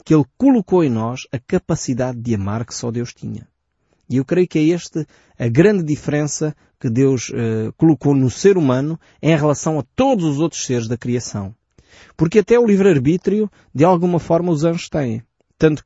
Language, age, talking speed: Portuguese, 20-39, 185 wpm